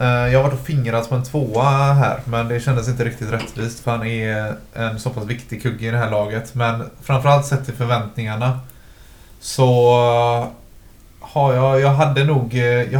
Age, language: 20-39, Swedish